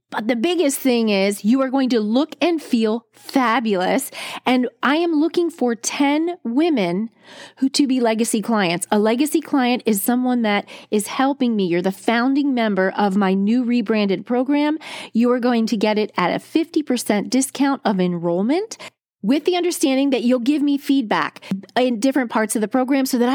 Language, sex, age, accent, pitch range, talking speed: English, female, 30-49, American, 205-275 Hz, 180 wpm